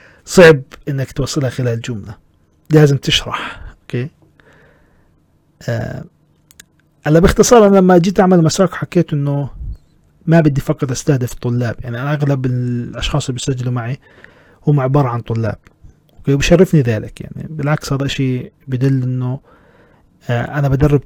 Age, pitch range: 40-59, 125-155 Hz